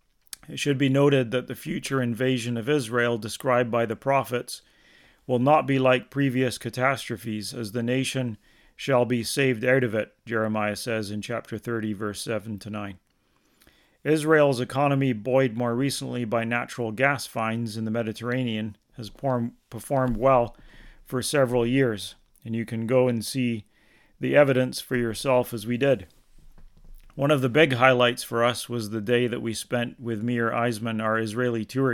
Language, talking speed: English, 165 wpm